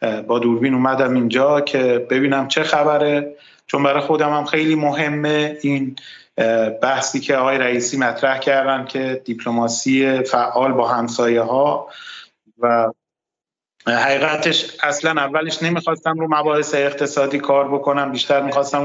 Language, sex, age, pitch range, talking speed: Persian, male, 30-49, 130-155 Hz, 125 wpm